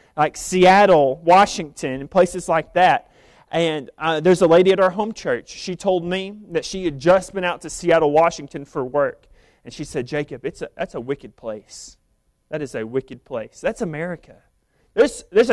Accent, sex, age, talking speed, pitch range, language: American, male, 30-49, 190 wpm, 160-205 Hz, English